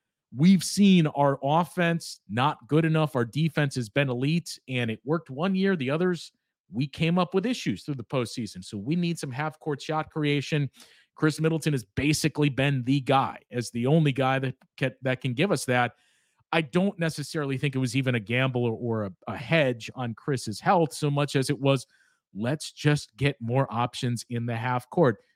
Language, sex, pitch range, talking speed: English, male, 125-160 Hz, 185 wpm